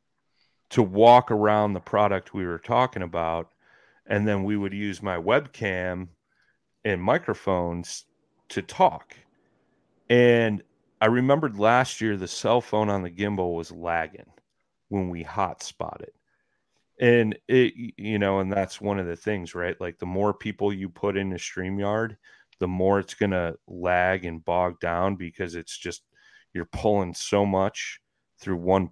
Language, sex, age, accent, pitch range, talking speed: English, male, 30-49, American, 90-105 Hz, 155 wpm